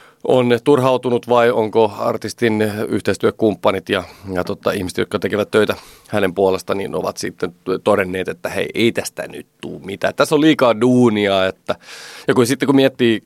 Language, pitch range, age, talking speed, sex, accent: Finnish, 95-120 Hz, 30-49, 165 wpm, male, native